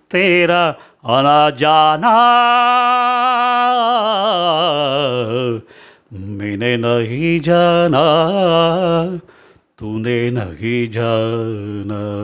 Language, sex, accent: Tamil, male, native